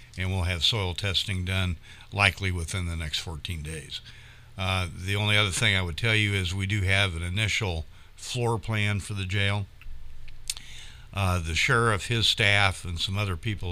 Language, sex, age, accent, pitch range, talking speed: English, male, 60-79, American, 90-110 Hz, 180 wpm